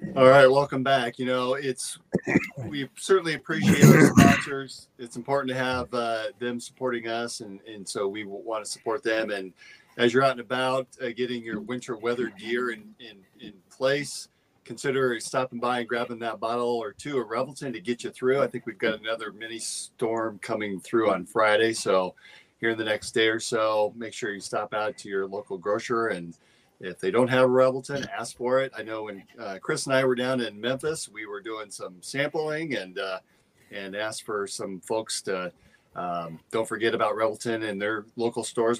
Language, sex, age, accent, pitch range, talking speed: English, male, 40-59, American, 110-135 Hz, 200 wpm